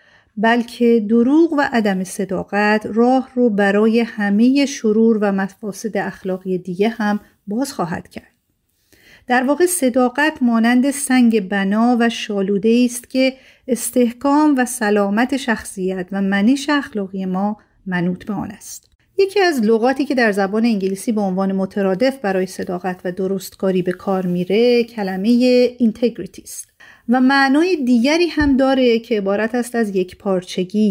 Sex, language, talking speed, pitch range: female, Persian, 135 wpm, 195-245 Hz